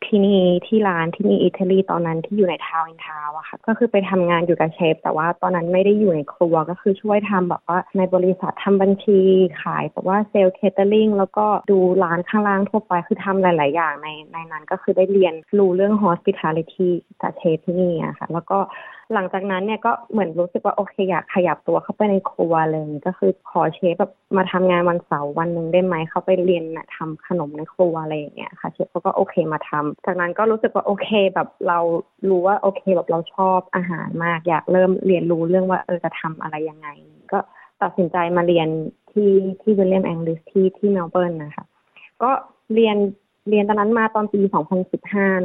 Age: 20-39